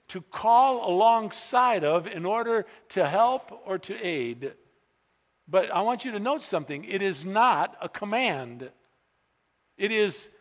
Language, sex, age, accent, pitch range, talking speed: English, male, 50-69, American, 140-215 Hz, 145 wpm